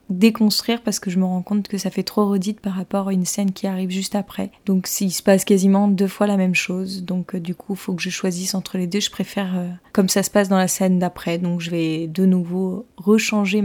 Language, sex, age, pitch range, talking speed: French, female, 20-39, 185-210 Hz, 265 wpm